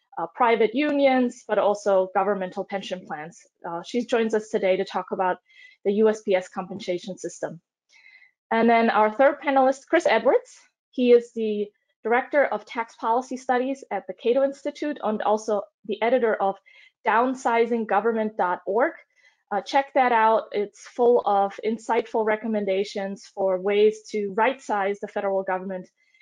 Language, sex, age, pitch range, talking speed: English, female, 20-39, 200-270 Hz, 135 wpm